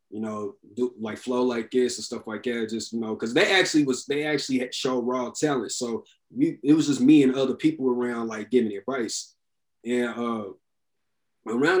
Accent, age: American, 20-39